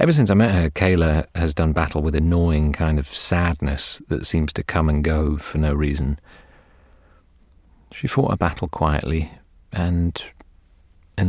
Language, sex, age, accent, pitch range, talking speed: English, male, 40-59, British, 80-100 Hz, 165 wpm